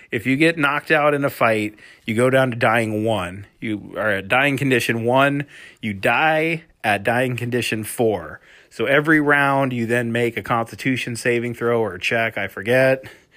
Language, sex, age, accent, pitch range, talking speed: English, male, 30-49, American, 115-140 Hz, 185 wpm